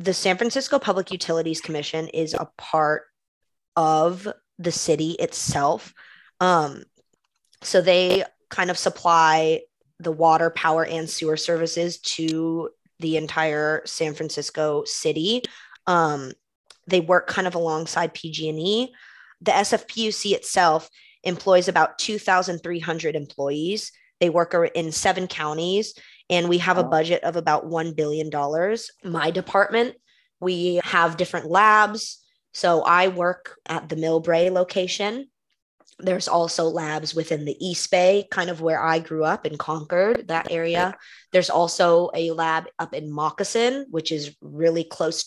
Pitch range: 160-185 Hz